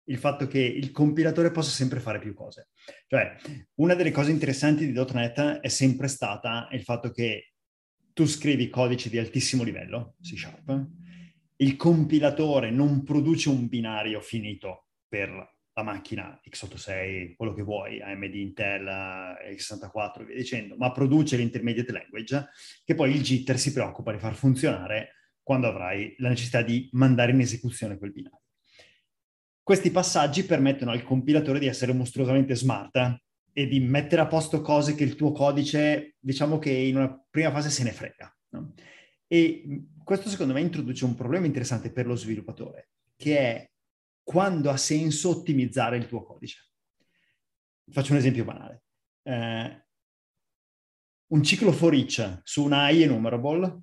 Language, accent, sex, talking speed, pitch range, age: Italian, native, male, 150 wpm, 115-150 Hz, 20-39